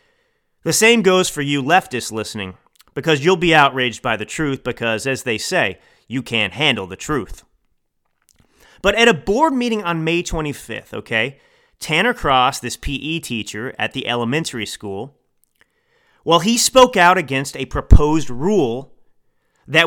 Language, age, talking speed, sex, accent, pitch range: English, 30-49, 150 wpm, male, American, 130-185 Hz